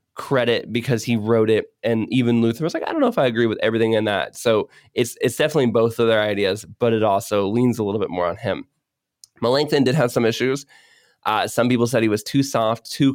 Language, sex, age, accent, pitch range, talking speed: English, male, 20-39, American, 110-125 Hz, 235 wpm